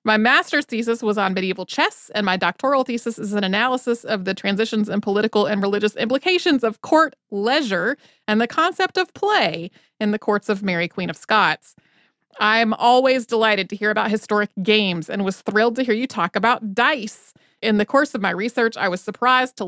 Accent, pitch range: American, 195-235 Hz